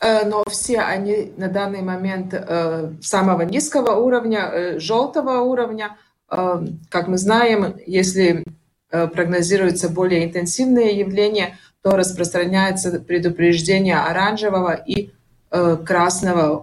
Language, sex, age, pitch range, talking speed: Russian, female, 30-49, 175-215 Hz, 90 wpm